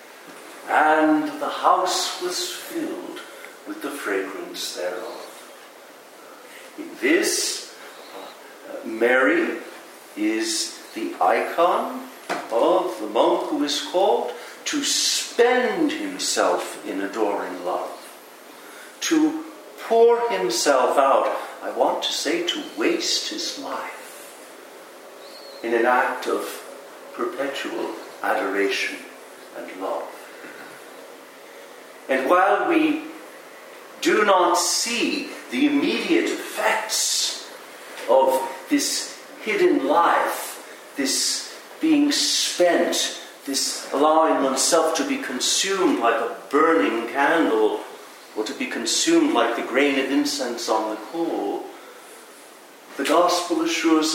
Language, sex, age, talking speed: English, male, 60-79, 100 wpm